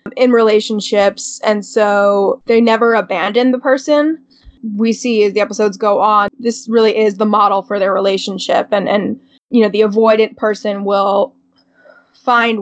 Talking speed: 155 wpm